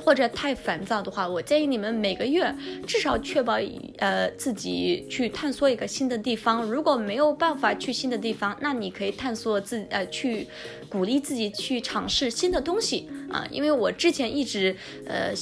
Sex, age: female, 20-39